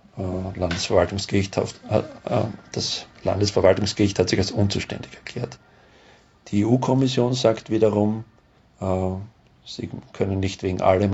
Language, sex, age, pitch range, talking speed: German, male, 50-69, 95-110 Hz, 90 wpm